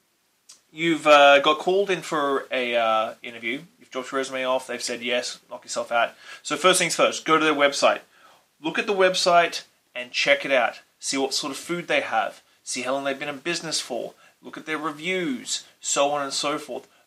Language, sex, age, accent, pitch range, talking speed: English, male, 20-39, Australian, 135-170 Hz, 210 wpm